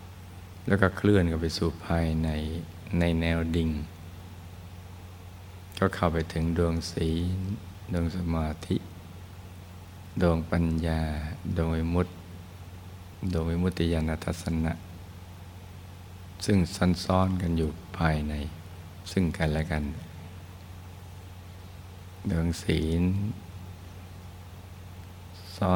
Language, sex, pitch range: Thai, male, 80-90 Hz